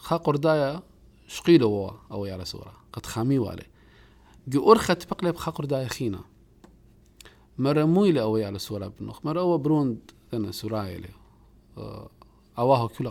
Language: English